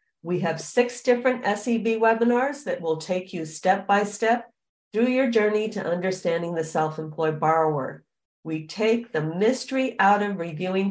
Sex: female